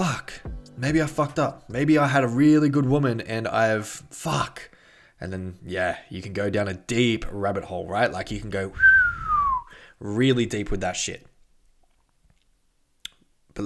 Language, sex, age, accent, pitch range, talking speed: English, male, 20-39, Australian, 95-140 Hz, 165 wpm